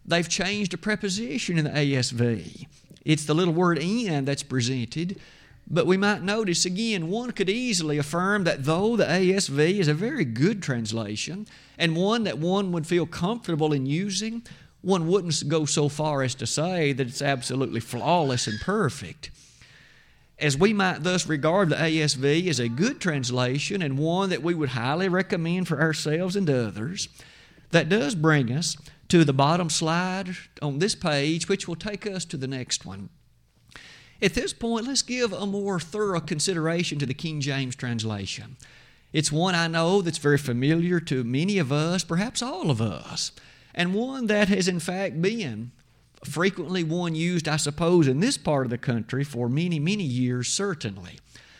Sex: male